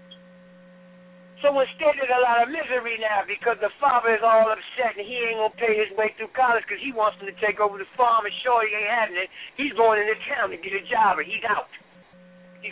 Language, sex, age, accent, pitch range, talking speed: English, male, 60-79, American, 180-230 Hz, 240 wpm